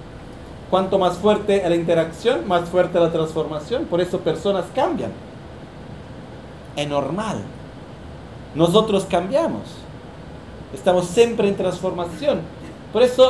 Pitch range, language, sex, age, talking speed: 170-210 Hz, Italian, male, 40-59, 115 wpm